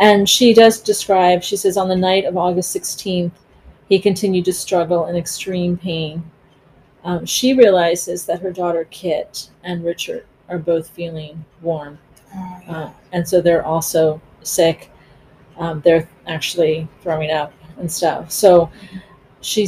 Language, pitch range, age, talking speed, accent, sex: English, 165-190 Hz, 30-49, 145 wpm, American, female